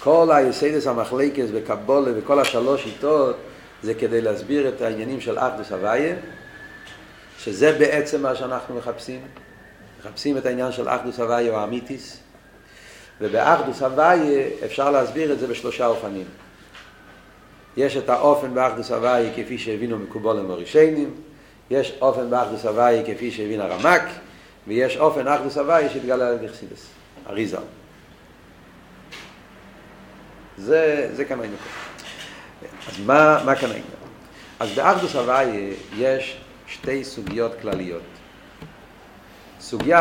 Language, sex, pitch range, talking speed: Hebrew, male, 120-145 Hz, 110 wpm